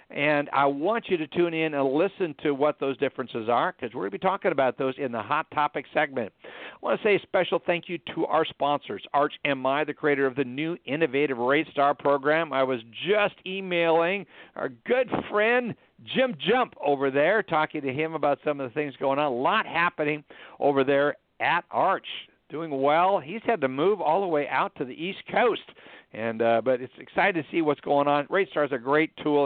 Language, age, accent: English, 60-79, American